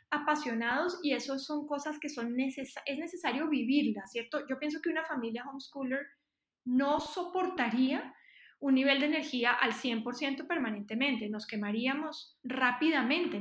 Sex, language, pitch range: female, Spanish, 235-290 Hz